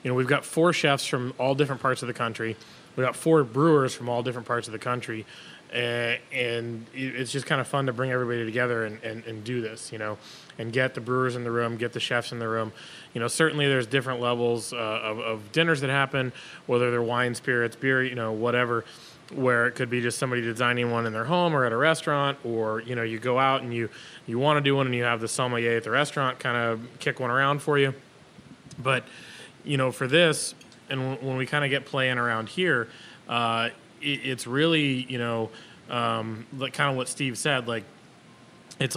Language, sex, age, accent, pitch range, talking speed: English, male, 20-39, American, 115-135 Hz, 225 wpm